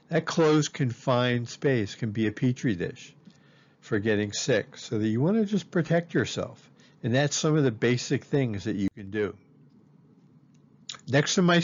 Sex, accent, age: male, American, 50-69